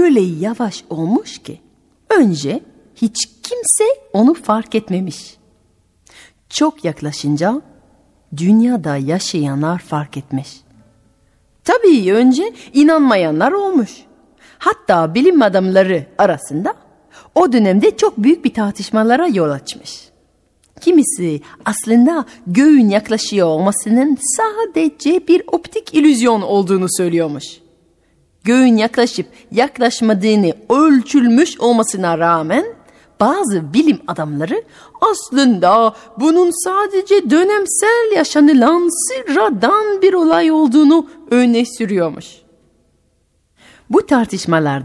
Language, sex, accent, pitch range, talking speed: Turkish, female, native, 180-305 Hz, 85 wpm